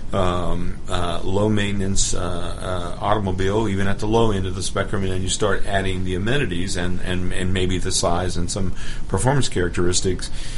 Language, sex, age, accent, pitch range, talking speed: English, male, 50-69, American, 90-110 Hz, 180 wpm